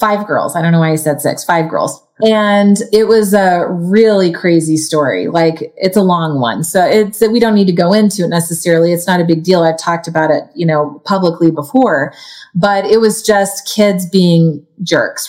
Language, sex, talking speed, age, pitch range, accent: English, female, 210 wpm, 30-49, 165-205 Hz, American